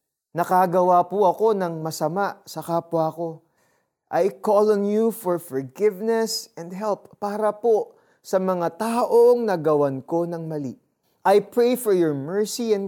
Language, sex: Filipino, male